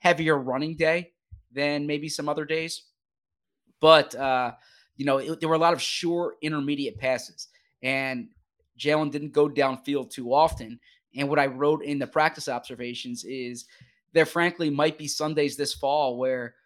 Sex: male